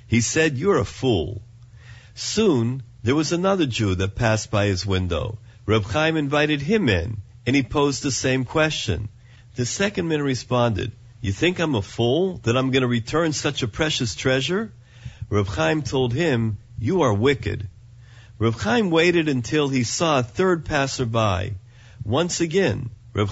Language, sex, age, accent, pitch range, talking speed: English, male, 50-69, American, 115-155 Hz, 165 wpm